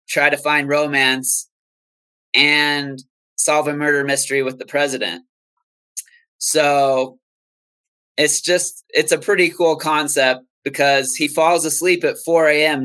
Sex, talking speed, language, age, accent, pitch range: male, 125 wpm, English, 20-39, American, 135-150 Hz